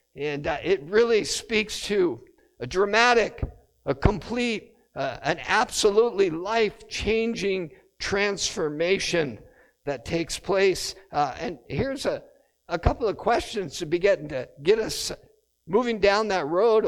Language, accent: English, American